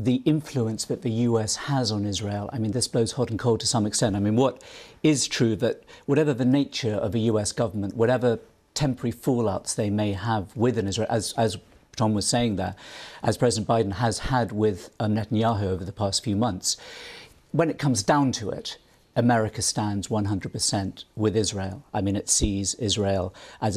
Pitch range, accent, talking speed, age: 100-120 Hz, British, 185 wpm, 50-69